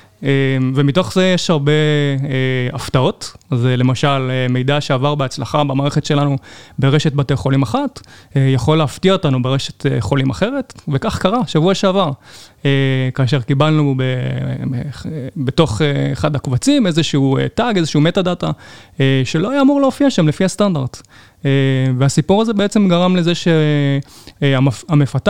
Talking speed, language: 140 wpm, Hebrew